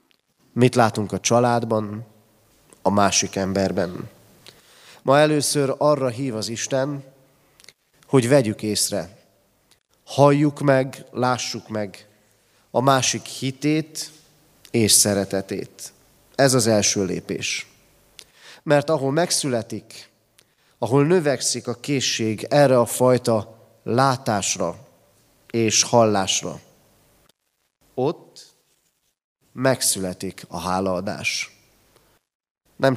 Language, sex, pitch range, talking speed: Hungarian, male, 105-140 Hz, 85 wpm